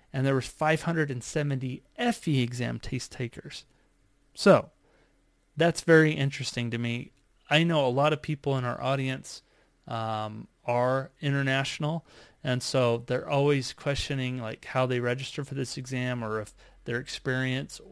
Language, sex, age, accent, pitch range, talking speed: English, male, 30-49, American, 120-140 Hz, 140 wpm